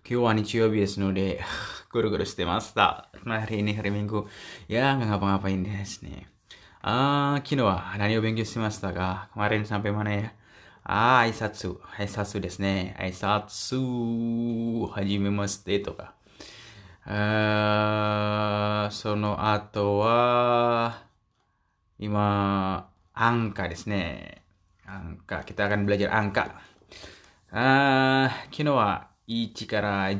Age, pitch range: 20-39, 100-115 Hz